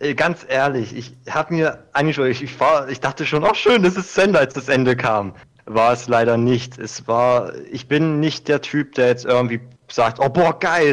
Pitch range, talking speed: 125-155 Hz, 220 wpm